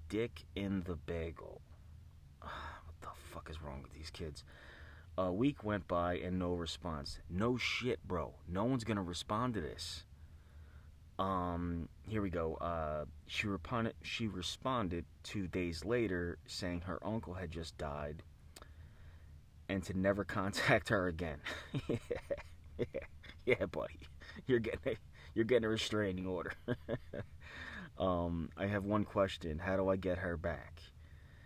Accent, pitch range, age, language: American, 80-95 Hz, 30-49, English